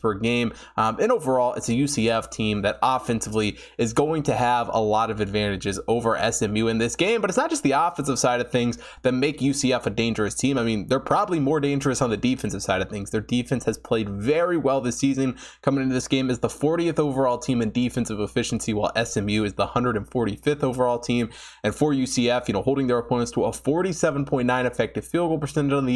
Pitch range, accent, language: 110-140 Hz, American, English